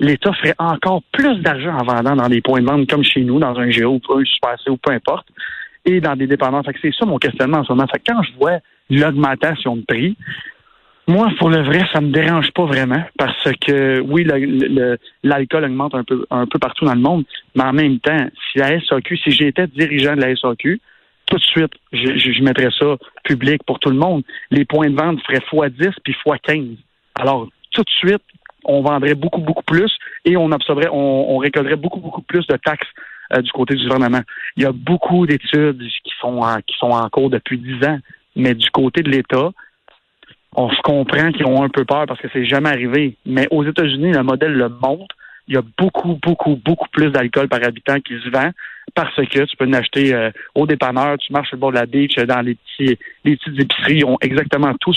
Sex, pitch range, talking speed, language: male, 130-155 Hz, 225 wpm, French